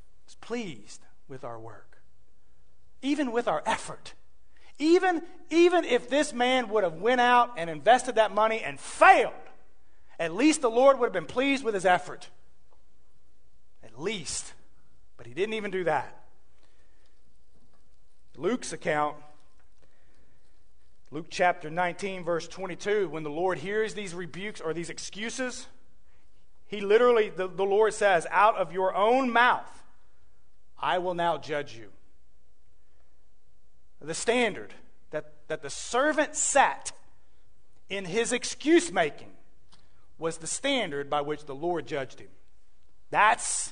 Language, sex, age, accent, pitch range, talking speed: English, male, 40-59, American, 135-225 Hz, 130 wpm